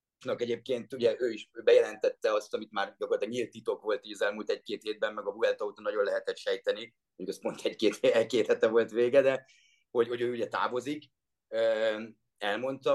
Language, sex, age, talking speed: Hungarian, male, 30-49, 155 wpm